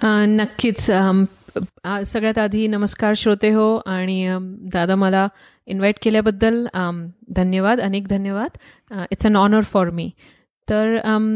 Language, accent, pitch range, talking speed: Marathi, native, 195-235 Hz, 100 wpm